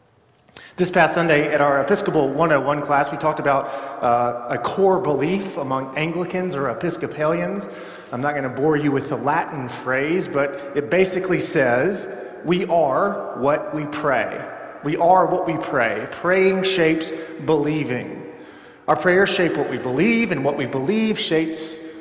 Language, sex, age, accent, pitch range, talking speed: English, male, 40-59, American, 140-185 Hz, 155 wpm